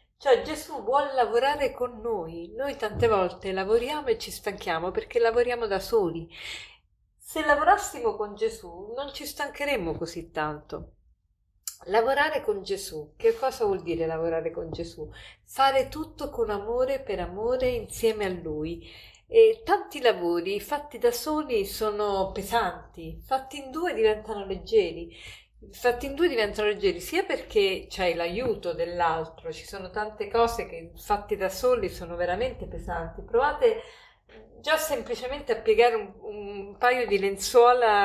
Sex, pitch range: female, 190-310 Hz